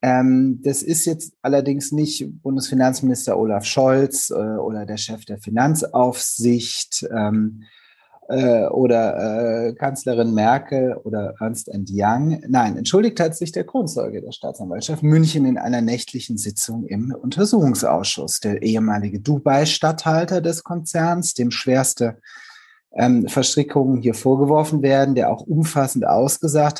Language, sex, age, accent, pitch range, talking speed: German, male, 30-49, German, 115-155 Hz, 125 wpm